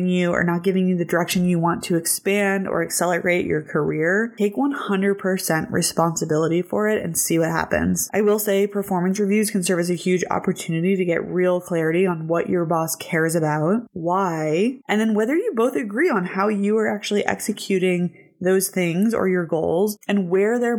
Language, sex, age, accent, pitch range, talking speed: English, female, 20-39, American, 170-200 Hz, 190 wpm